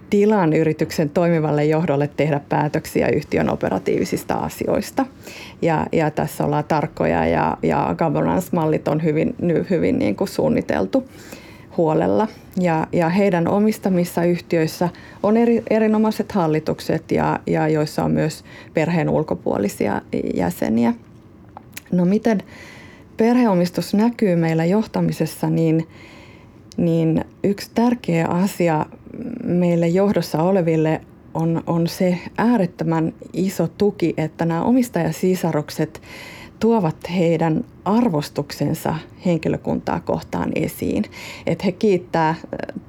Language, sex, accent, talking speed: Finnish, female, native, 100 wpm